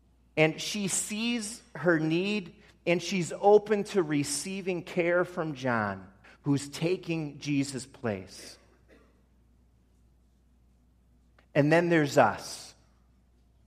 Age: 40-59